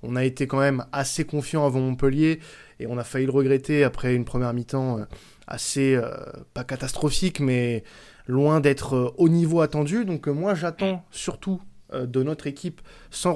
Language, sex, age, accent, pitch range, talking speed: French, male, 20-39, French, 125-150 Hz, 175 wpm